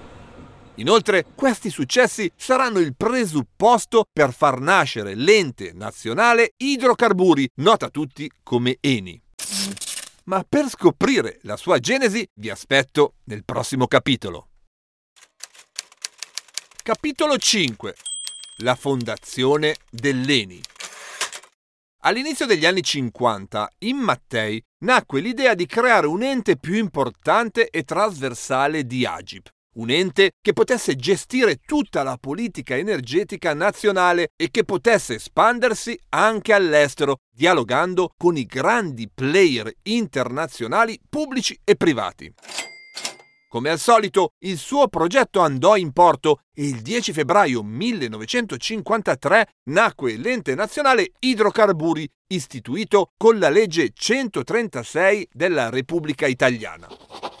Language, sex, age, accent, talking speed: Italian, male, 50-69, native, 105 wpm